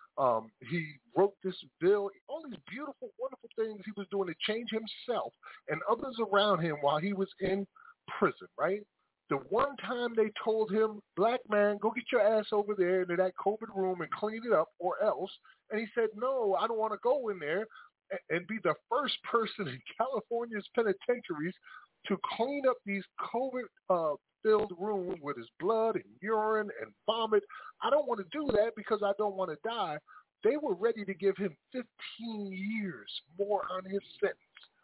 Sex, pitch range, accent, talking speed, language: male, 185-250 Hz, American, 185 wpm, English